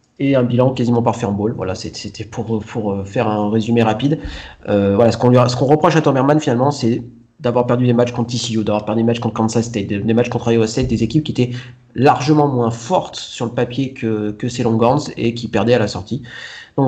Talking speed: 235 wpm